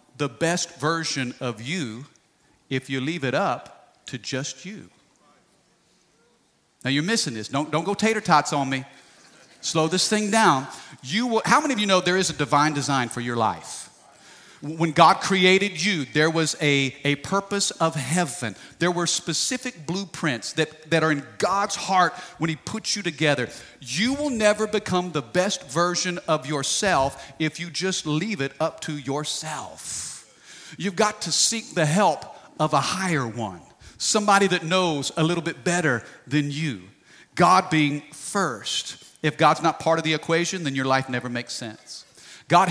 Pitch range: 145-185 Hz